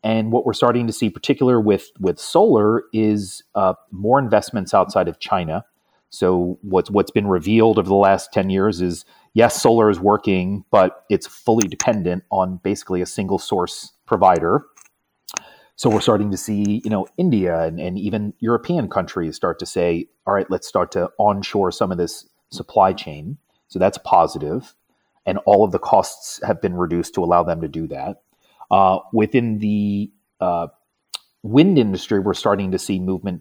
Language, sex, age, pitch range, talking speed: English, male, 30-49, 90-110 Hz, 175 wpm